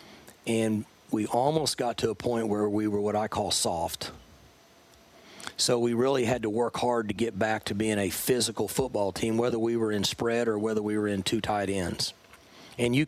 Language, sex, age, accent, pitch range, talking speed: English, male, 40-59, American, 105-125 Hz, 205 wpm